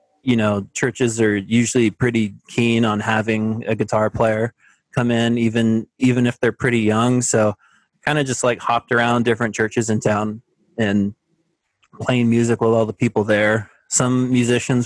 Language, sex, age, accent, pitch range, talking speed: Indonesian, male, 20-39, American, 105-120 Hz, 165 wpm